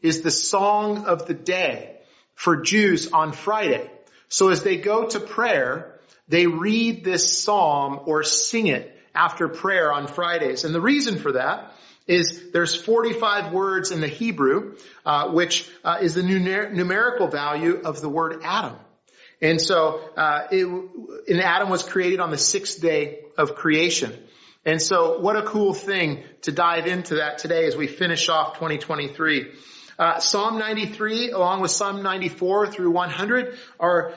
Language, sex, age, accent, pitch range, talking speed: English, male, 40-59, American, 165-215 Hz, 160 wpm